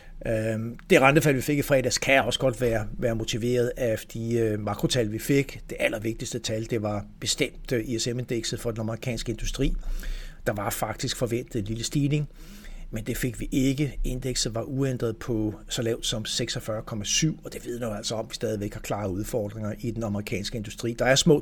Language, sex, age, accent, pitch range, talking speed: Danish, male, 60-79, native, 110-130 Hz, 190 wpm